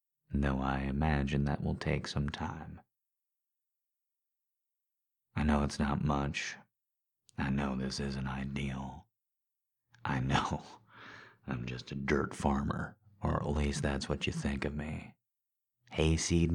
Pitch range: 70-80 Hz